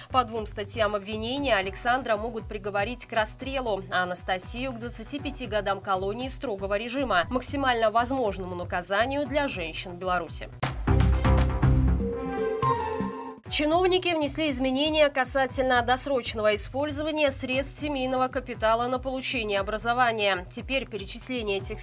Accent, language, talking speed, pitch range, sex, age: native, Russian, 105 wpm, 210-275 Hz, female, 20-39